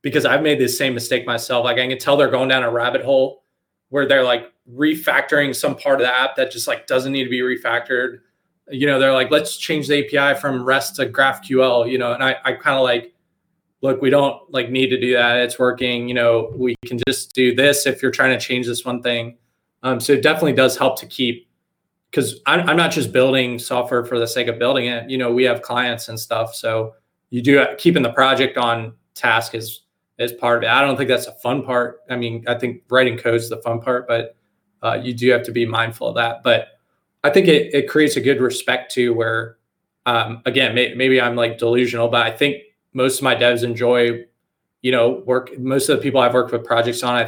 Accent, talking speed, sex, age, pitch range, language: American, 235 wpm, male, 20-39, 120-130 Hz, English